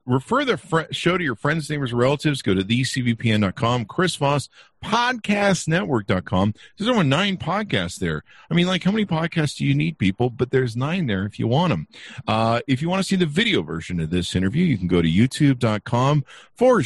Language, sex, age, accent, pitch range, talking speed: English, male, 50-69, American, 95-130 Hz, 195 wpm